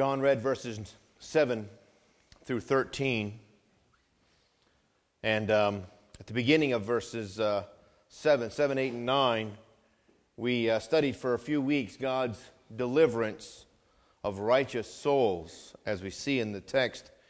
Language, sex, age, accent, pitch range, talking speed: English, male, 40-59, American, 105-130 Hz, 130 wpm